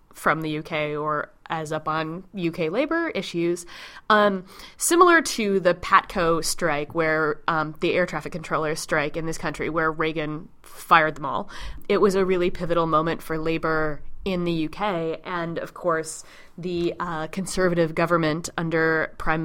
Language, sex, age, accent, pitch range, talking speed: English, female, 20-39, American, 160-190 Hz, 155 wpm